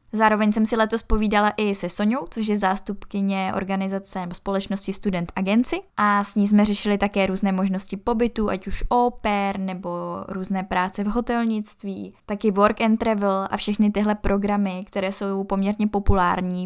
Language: Czech